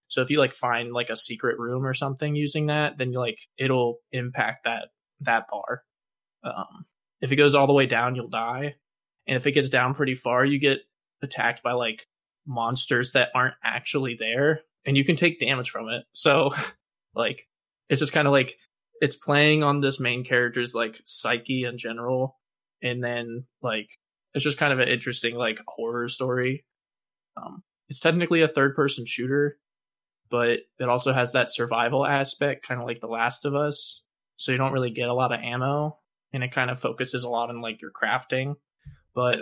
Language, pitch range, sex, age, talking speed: English, 125-145 Hz, male, 20-39, 190 wpm